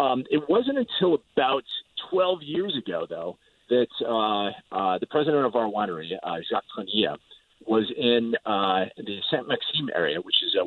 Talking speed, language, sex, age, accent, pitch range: 170 wpm, English, male, 40-59, American, 110-175 Hz